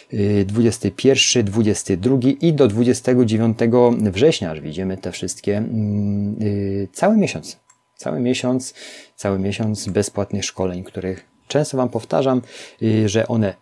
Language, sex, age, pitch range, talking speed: Polish, male, 30-49, 100-125 Hz, 105 wpm